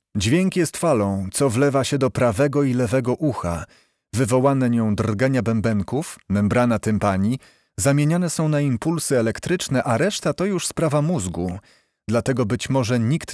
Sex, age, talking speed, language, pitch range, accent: male, 30-49, 145 wpm, Polish, 110-145 Hz, native